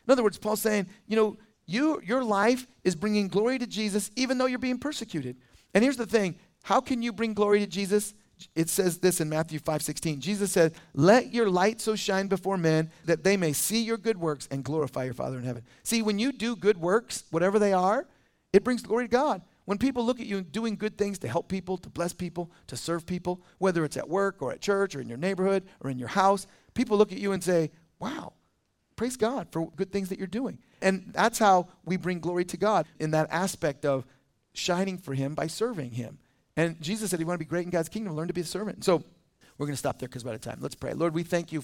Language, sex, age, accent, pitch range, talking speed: English, male, 40-59, American, 160-210 Hz, 245 wpm